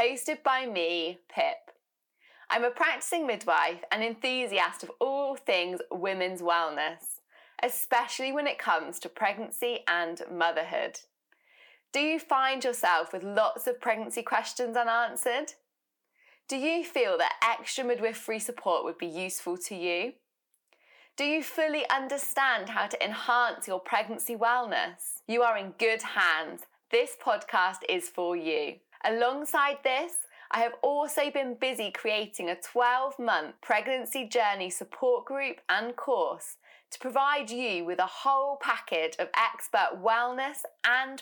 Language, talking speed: English, 135 wpm